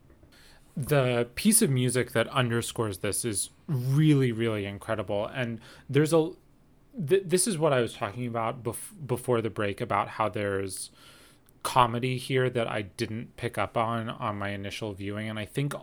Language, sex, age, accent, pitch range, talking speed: English, male, 30-49, American, 100-125 Hz, 165 wpm